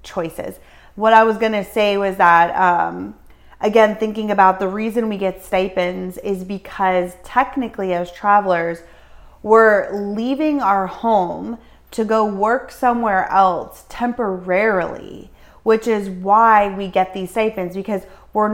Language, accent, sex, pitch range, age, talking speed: English, American, female, 180-220 Hz, 30-49, 135 wpm